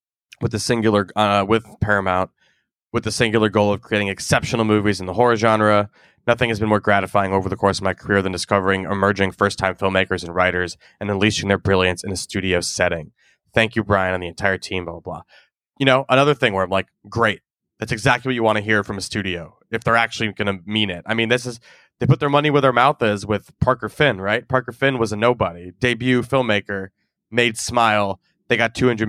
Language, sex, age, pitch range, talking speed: English, male, 20-39, 100-125 Hz, 220 wpm